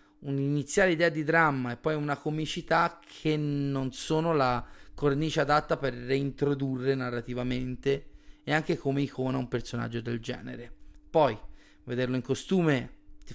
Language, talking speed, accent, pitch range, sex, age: Italian, 135 wpm, native, 125-150 Hz, male, 30-49